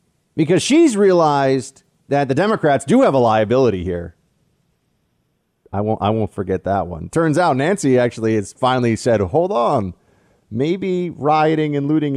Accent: American